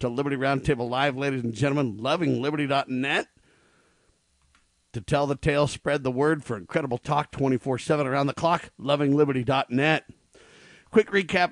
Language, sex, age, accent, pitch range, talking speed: English, male, 50-69, American, 125-150 Hz, 130 wpm